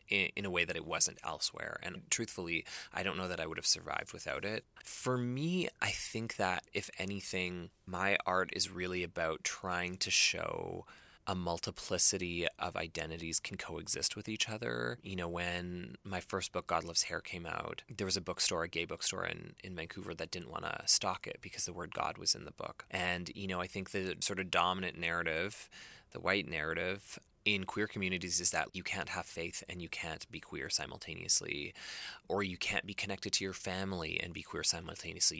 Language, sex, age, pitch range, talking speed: English, male, 20-39, 85-100 Hz, 200 wpm